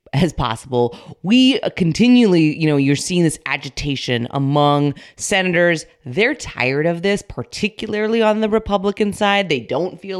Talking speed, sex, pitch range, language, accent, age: 140 wpm, female, 140-185 Hz, English, American, 20-39